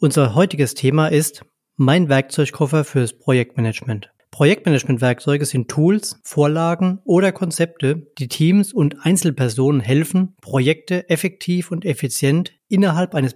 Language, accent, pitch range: German, German, 135-165 Hz